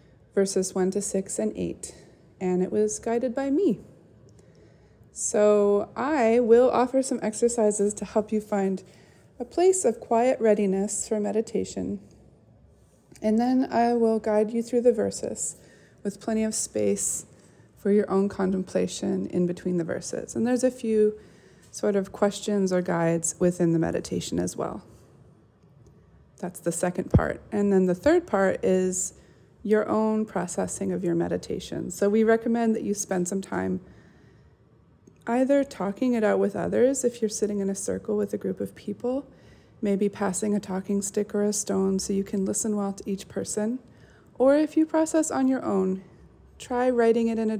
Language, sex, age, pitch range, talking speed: English, female, 30-49, 185-220 Hz, 170 wpm